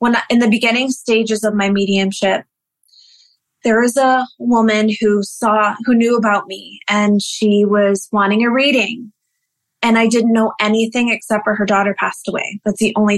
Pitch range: 205-235 Hz